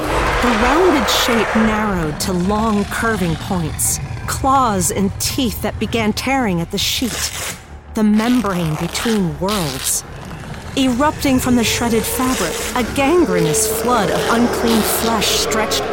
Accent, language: American, English